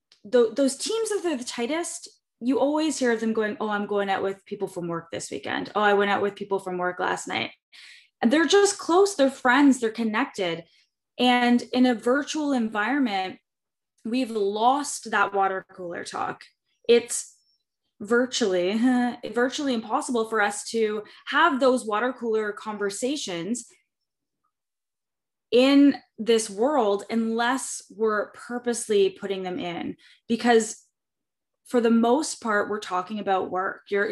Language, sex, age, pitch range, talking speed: English, female, 20-39, 195-245 Hz, 145 wpm